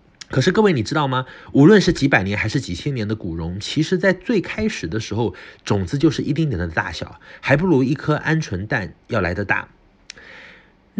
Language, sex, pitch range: Chinese, male, 105-160 Hz